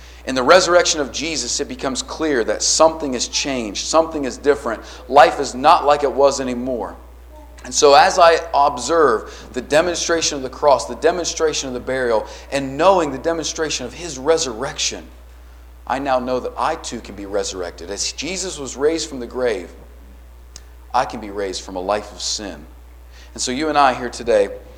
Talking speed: 185 wpm